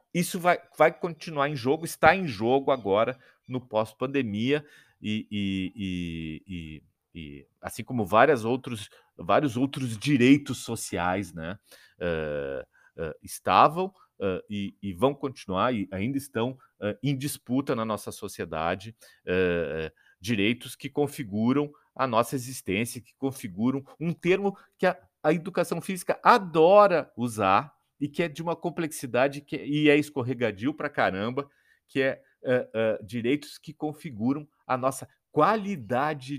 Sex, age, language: male, 40-59, Portuguese